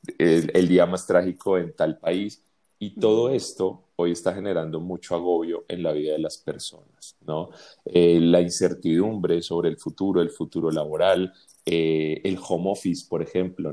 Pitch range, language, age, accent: 85-110 Hz, Spanish, 30-49, Colombian